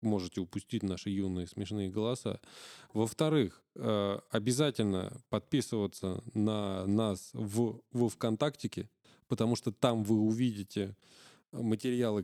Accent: native